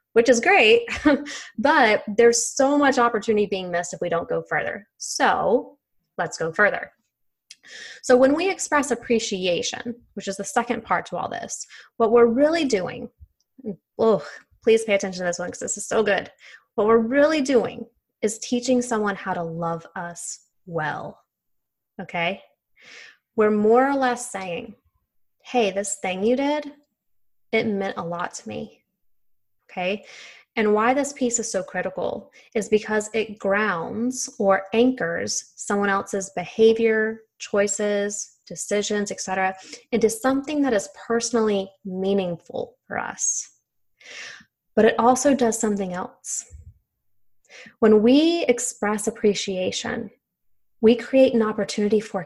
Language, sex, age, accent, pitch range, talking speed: English, female, 20-39, American, 195-245 Hz, 140 wpm